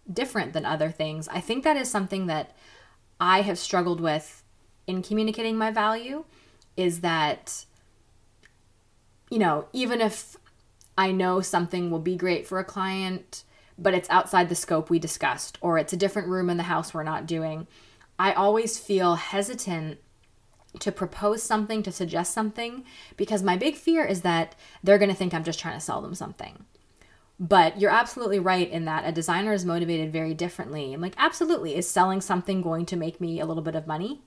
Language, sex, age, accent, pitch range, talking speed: English, female, 20-39, American, 160-195 Hz, 185 wpm